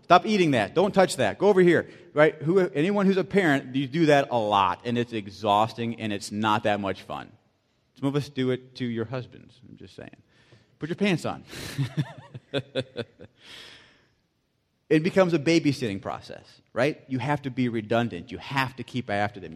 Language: English